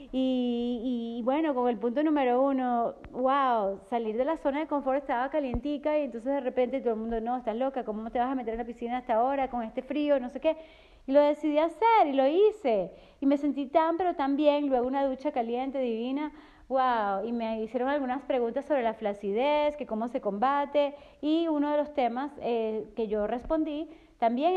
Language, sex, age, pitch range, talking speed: English, female, 30-49, 240-295 Hz, 210 wpm